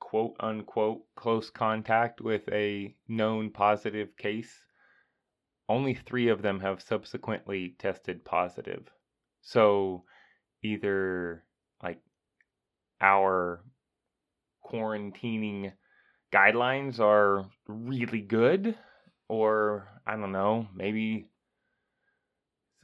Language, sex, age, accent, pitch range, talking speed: English, male, 20-39, American, 100-125 Hz, 85 wpm